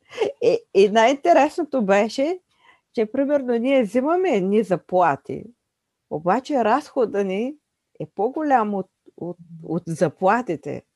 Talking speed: 105 wpm